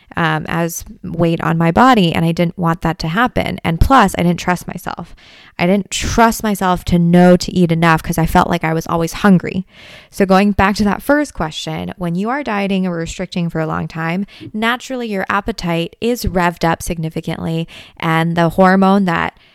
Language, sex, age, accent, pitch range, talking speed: English, female, 20-39, American, 165-200 Hz, 195 wpm